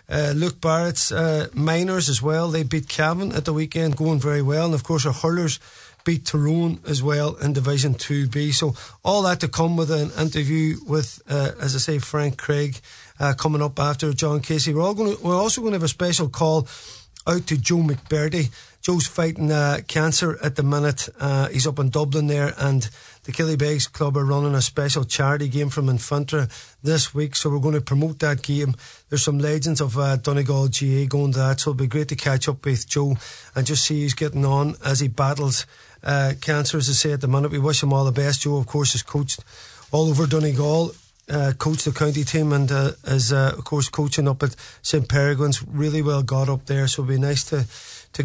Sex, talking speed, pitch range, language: male, 220 wpm, 140-160 Hz, English